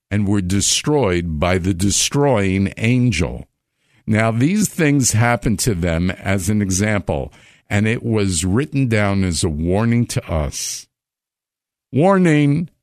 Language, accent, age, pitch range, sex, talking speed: English, American, 50-69, 100-140 Hz, male, 125 wpm